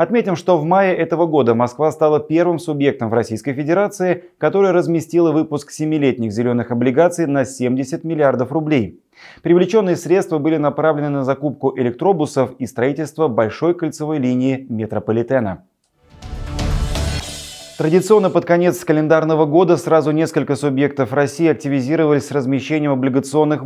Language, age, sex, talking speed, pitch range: Russian, 30-49, male, 125 wpm, 125-155 Hz